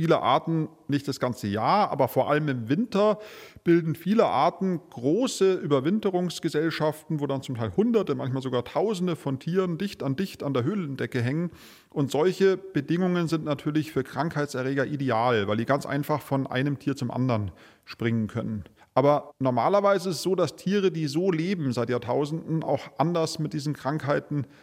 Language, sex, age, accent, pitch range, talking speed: German, male, 30-49, German, 135-170 Hz, 170 wpm